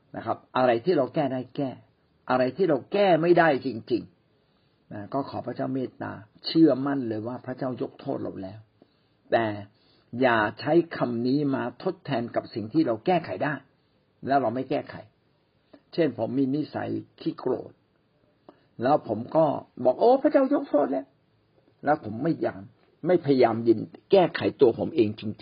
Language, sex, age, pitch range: Thai, male, 60-79, 105-140 Hz